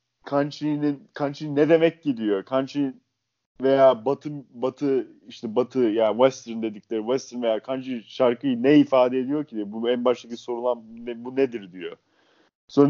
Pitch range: 130-165 Hz